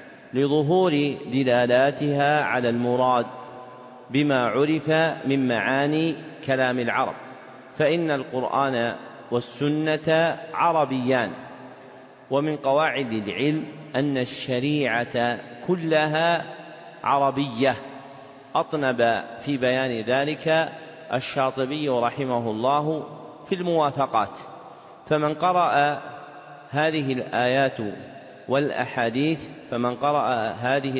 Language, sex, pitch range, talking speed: Arabic, male, 125-155 Hz, 75 wpm